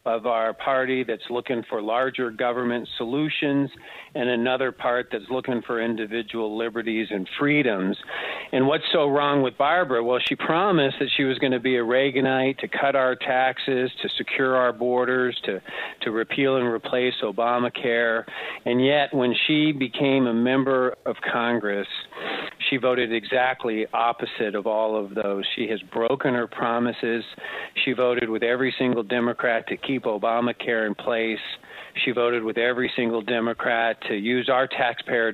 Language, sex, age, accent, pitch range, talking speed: English, male, 50-69, American, 115-130 Hz, 160 wpm